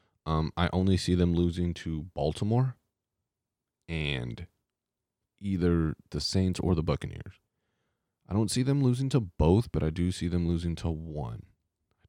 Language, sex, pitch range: English, male, 80-95 Hz